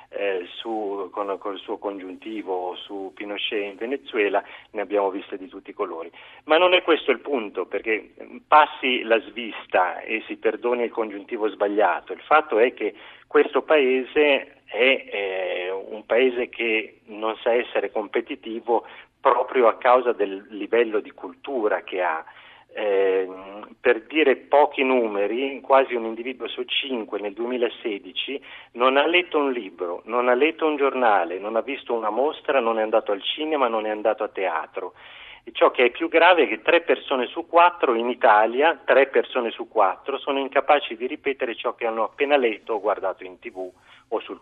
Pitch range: 110-165 Hz